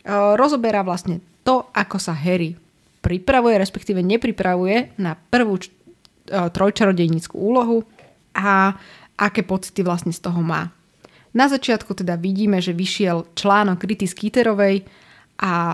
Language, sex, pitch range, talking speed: Slovak, female, 175-210 Hz, 120 wpm